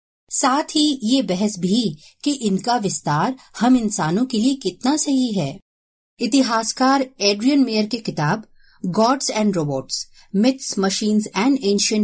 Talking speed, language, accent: 135 wpm, Hindi, native